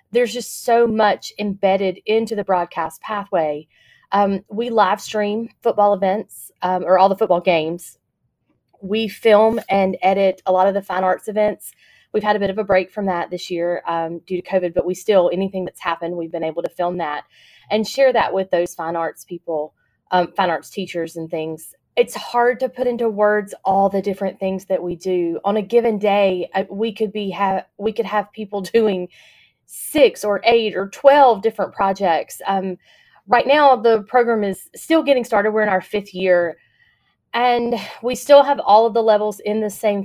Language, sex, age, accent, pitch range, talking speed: English, female, 20-39, American, 185-220 Hz, 195 wpm